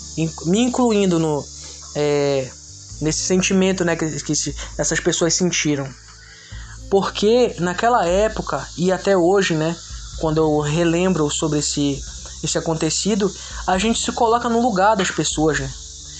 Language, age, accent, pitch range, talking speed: Portuguese, 20-39, Brazilian, 145-185 Hz, 130 wpm